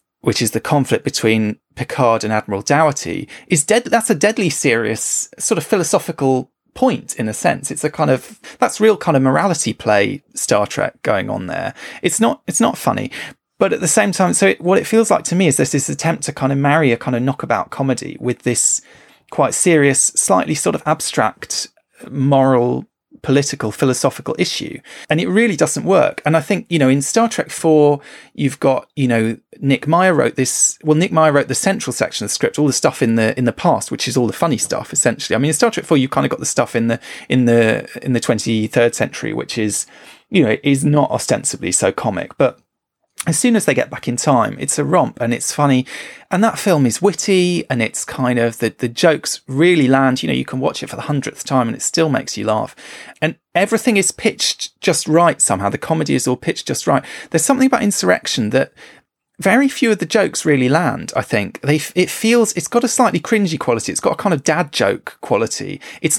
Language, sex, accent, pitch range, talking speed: English, male, British, 125-195 Hz, 225 wpm